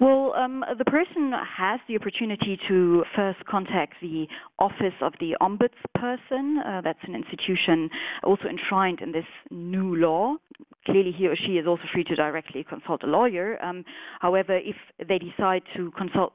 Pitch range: 180-235 Hz